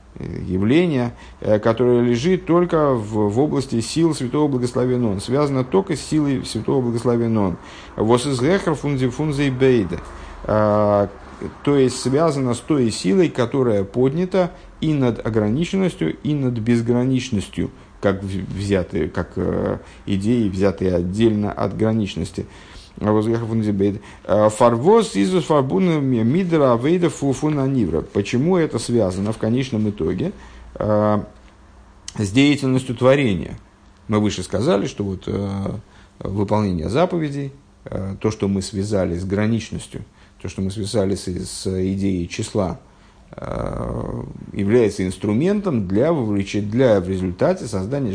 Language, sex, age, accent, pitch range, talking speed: Russian, male, 50-69, native, 100-130 Hz, 95 wpm